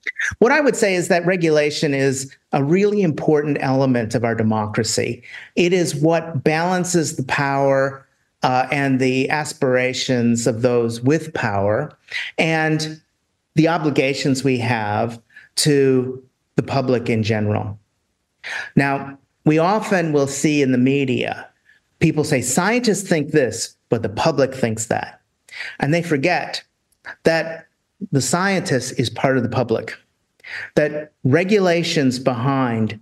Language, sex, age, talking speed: English, male, 40-59, 130 wpm